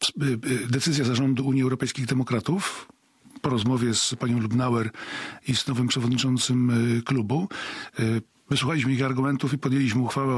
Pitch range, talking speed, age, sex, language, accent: 130-180 Hz, 120 wpm, 40-59, male, Polish, native